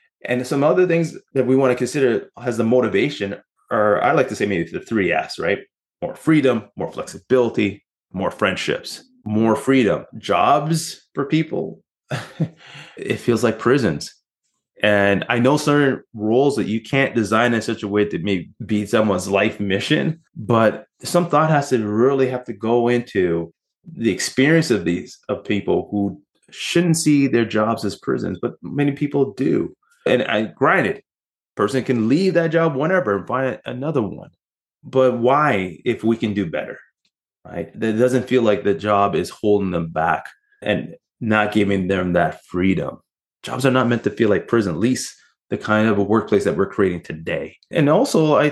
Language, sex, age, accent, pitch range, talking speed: English, male, 20-39, American, 105-145 Hz, 175 wpm